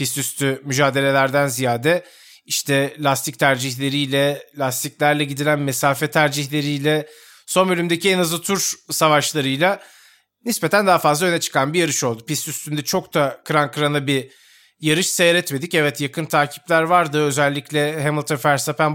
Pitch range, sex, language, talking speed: 145-190 Hz, male, Turkish, 130 wpm